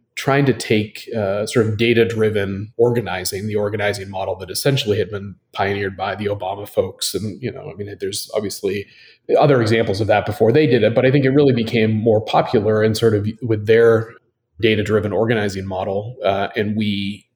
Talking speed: 185 wpm